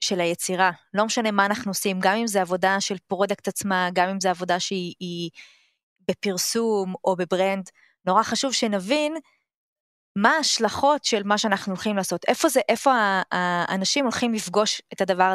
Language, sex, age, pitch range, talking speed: Hebrew, female, 20-39, 185-225 Hz, 155 wpm